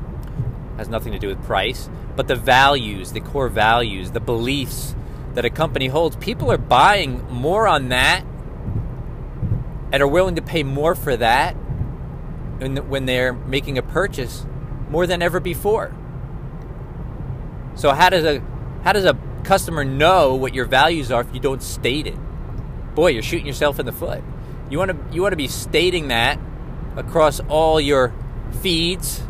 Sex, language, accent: male, English, American